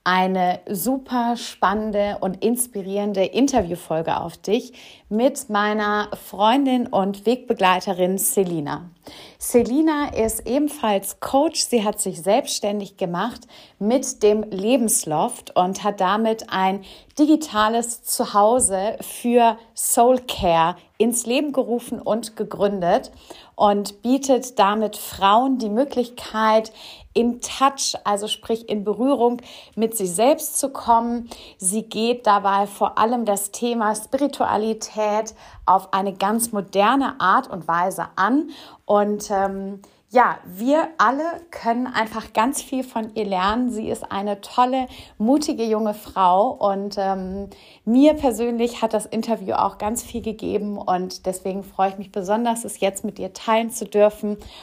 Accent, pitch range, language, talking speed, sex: German, 195-235 Hz, German, 125 wpm, female